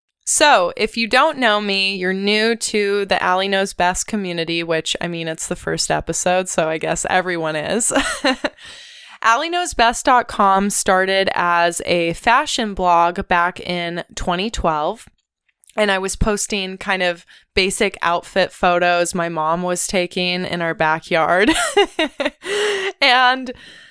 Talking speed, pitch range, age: 130 wpm, 175-220 Hz, 20-39